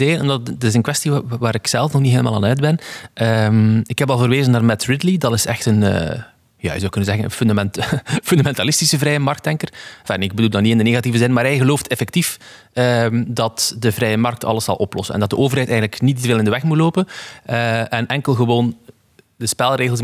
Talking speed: 200 wpm